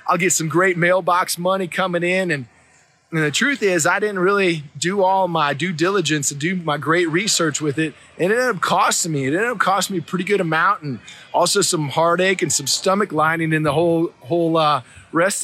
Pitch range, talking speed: 155-190 Hz, 220 wpm